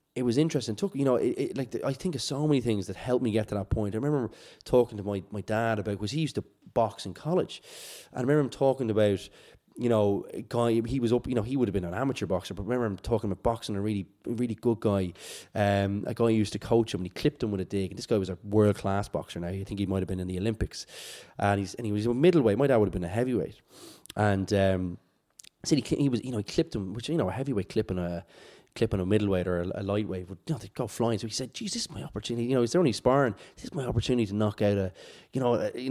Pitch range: 105-135 Hz